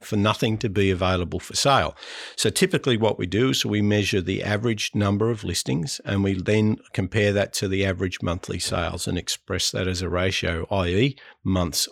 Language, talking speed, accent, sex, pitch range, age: English, 190 wpm, Australian, male, 90-110 Hz, 50-69